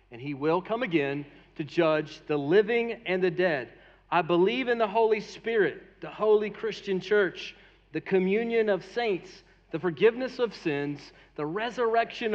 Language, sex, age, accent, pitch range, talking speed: English, male, 40-59, American, 155-200 Hz, 155 wpm